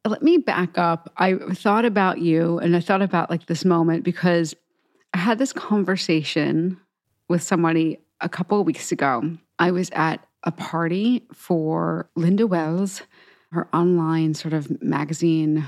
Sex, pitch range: female, 165-195 Hz